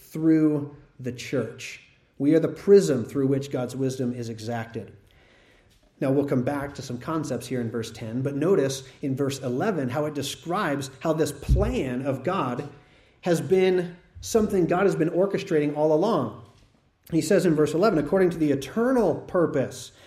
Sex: male